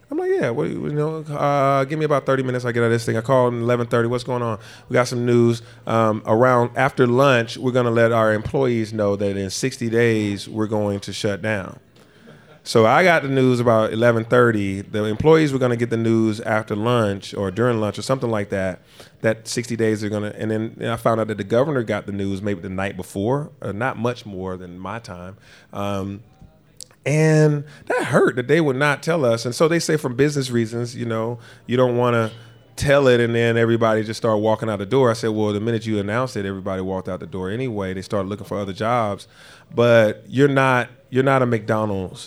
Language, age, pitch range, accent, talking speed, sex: English, 30-49, 105-125 Hz, American, 230 wpm, male